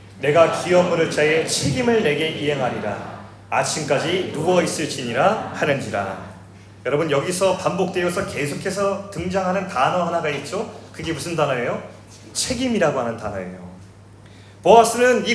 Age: 30-49